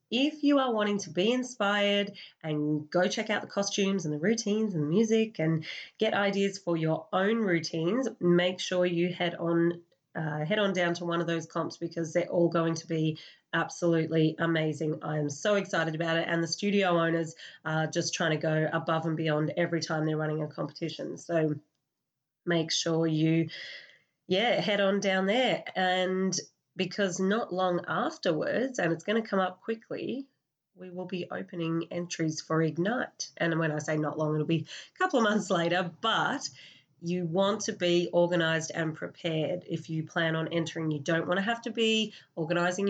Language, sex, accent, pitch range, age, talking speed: English, female, Australian, 160-190 Hz, 30-49, 185 wpm